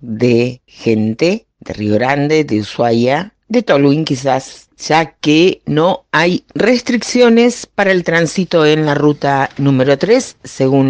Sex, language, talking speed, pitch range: female, Spanish, 130 wpm, 120-155 Hz